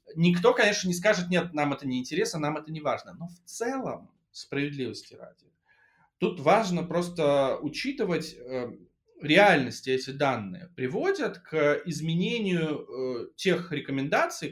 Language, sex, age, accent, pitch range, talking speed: Russian, male, 20-39, native, 145-195 Hz, 125 wpm